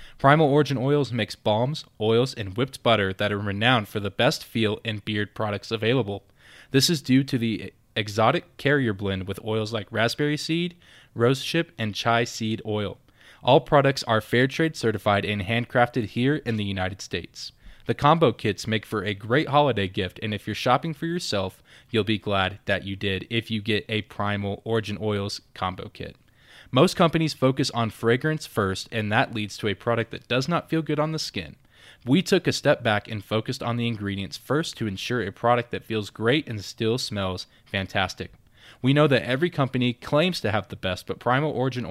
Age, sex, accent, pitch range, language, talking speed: 20-39, male, American, 105-130 Hz, English, 195 wpm